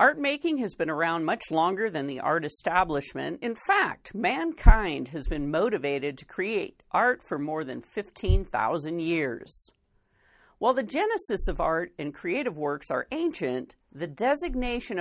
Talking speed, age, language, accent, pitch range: 150 wpm, 50-69, English, American, 155-255 Hz